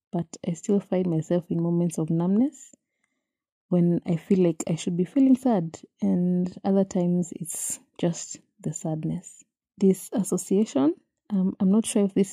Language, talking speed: English, 160 wpm